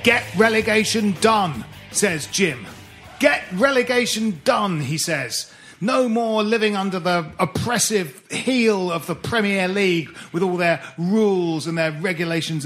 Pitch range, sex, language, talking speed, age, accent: 175-230 Hz, male, English, 135 wpm, 40-59, British